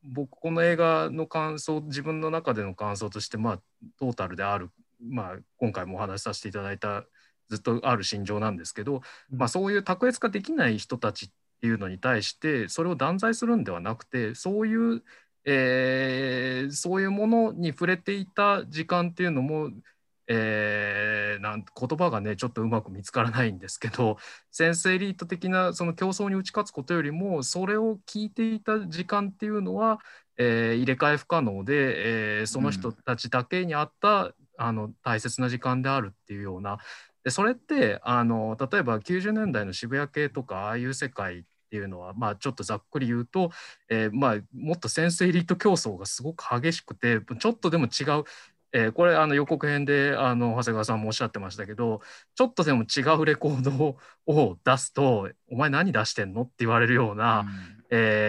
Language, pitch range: Japanese, 110-170 Hz